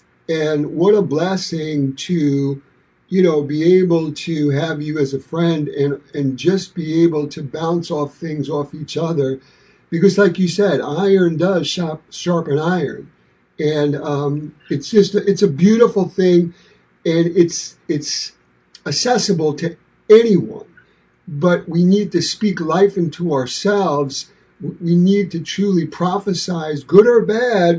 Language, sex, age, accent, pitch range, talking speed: English, male, 50-69, American, 150-190 Hz, 145 wpm